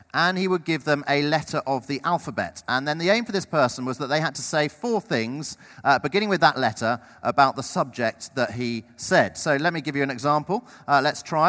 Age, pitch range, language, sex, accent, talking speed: 40-59, 140-215 Hz, English, male, British, 240 wpm